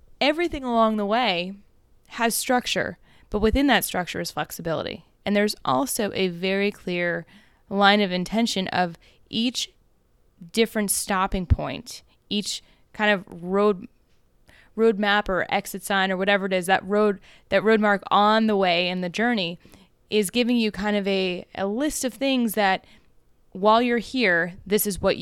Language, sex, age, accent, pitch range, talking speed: English, female, 20-39, American, 190-230 Hz, 155 wpm